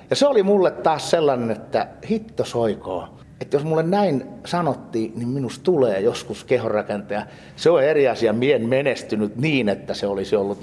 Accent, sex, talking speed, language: native, male, 165 wpm, Finnish